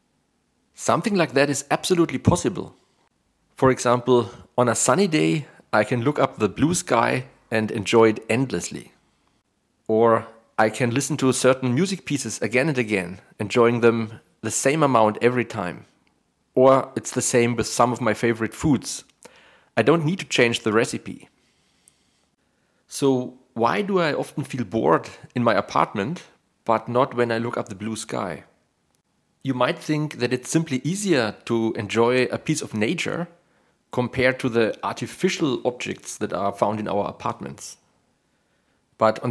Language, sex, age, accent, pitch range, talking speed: English, male, 40-59, German, 110-145 Hz, 155 wpm